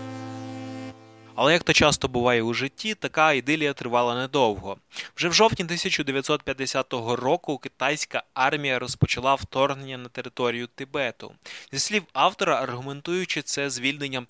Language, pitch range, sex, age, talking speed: Ukrainian, 125-160 Hz, male, 20-39, 115 wpm